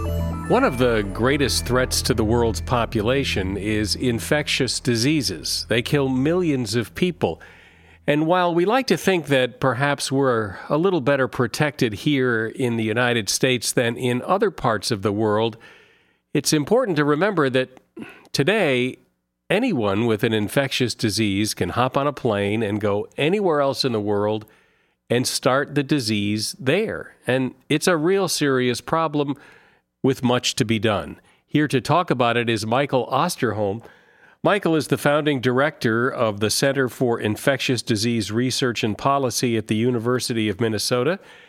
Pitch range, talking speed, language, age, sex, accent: 110-145 Hz, 155 wpm, English, 50-69, male, American